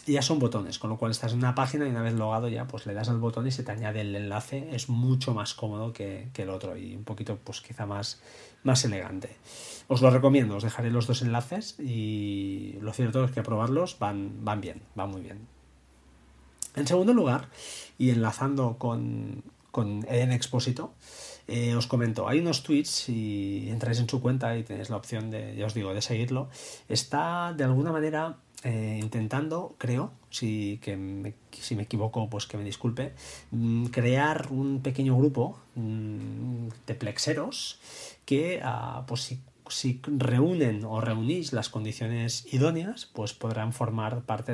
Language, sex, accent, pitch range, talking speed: Spanish, male, Spanish, 110-130 Hz, 180 wpm